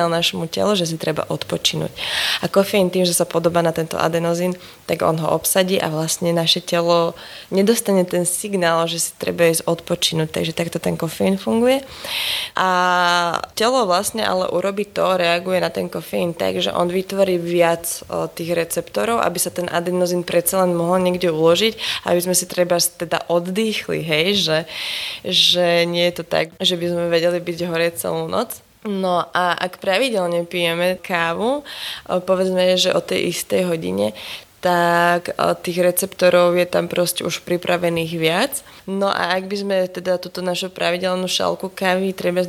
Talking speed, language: 160 wpm, Slovak